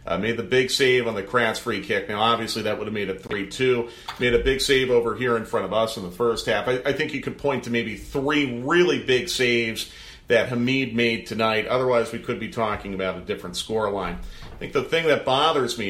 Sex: male